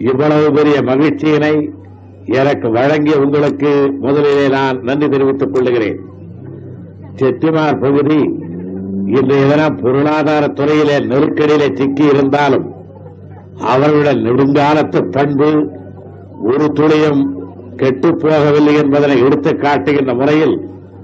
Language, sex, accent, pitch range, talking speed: Tamil, male, native, 120-150 Hz, 85 wpm